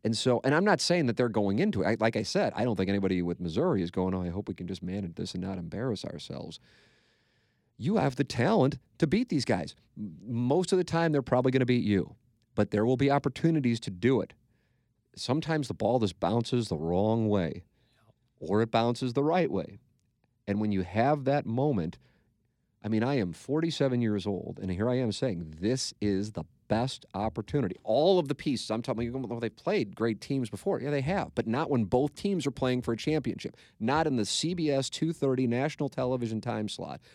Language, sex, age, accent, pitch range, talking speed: English, male, 40-59, American, 105-145 Hz, 210 wpm